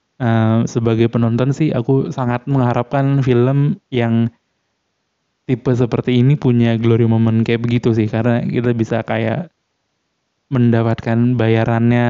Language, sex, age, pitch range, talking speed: Indonesian, male, 20-39, 115-140 Hz, 120 wpm